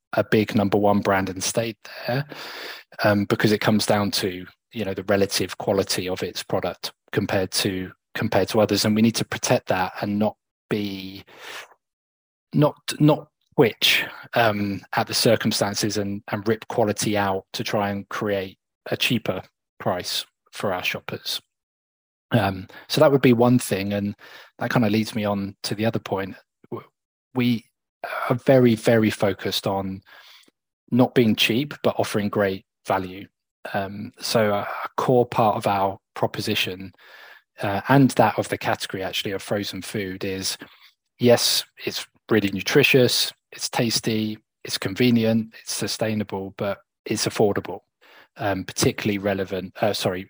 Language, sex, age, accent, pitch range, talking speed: English, male, 20-39, British, 95-115 Hz, 150 wpm